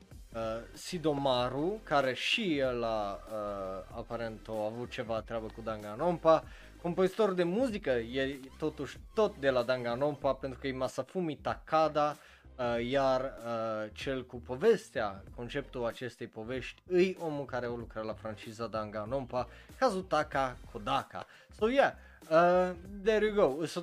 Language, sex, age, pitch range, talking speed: Romanian, male, 20-39, 115-160 Hz, 135 wpm